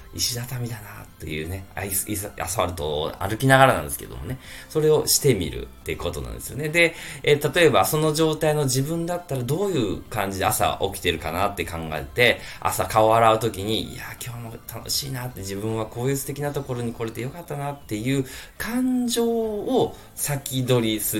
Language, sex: Japanese, male